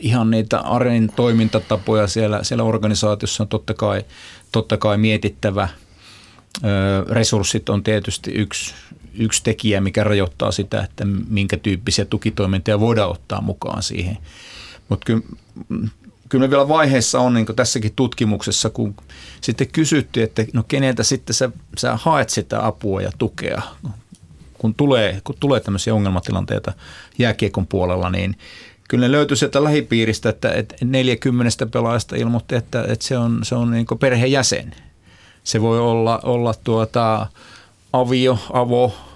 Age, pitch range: 30-49, 105-125 Hz